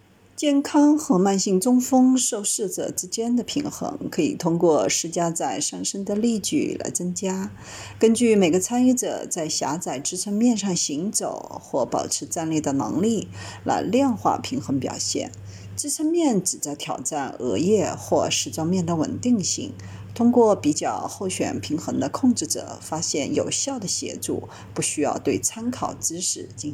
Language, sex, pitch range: Chinese, female, 155-250 Hz